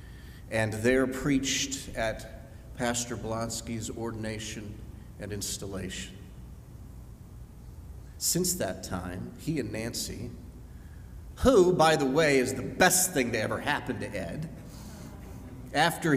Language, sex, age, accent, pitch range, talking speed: English, male, 40-59, American, 105-135 Hz, 110 wpm